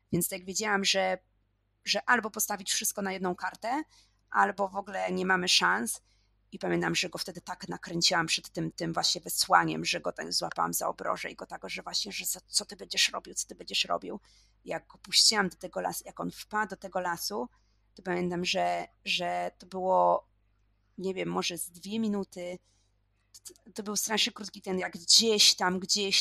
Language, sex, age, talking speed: Polish, female, 30-49, 190 wpm